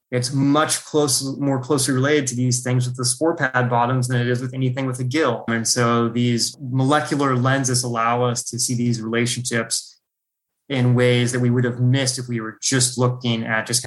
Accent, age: American, 20-39